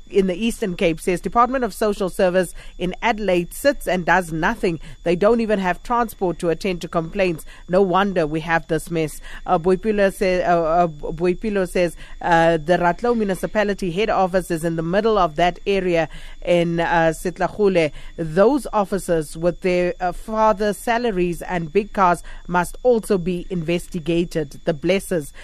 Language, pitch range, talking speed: English, 170-210 Hz, 155 wpm